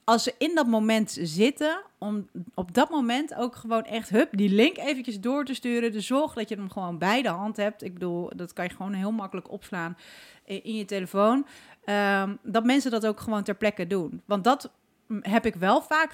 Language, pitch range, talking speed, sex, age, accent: Dutch, 185-225 Hz, 215 wpm, female, 40-59, Dutch